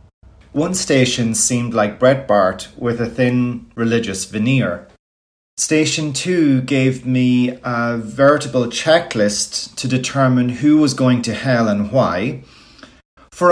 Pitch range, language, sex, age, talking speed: 110-145 Hz, English, male, 40-59, 120 wpm